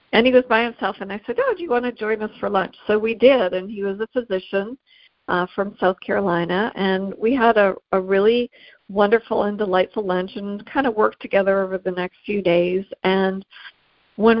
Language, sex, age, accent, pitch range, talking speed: English, female, 60-79, American, 185-220 Hz, 215 wpm